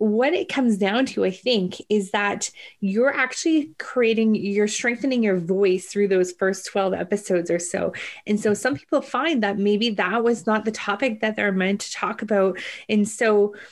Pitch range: 195-225 Hz